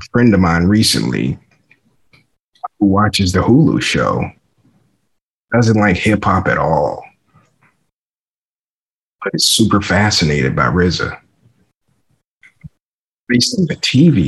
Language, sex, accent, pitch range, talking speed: English, male, American, 95-115 Hz, 95 wpm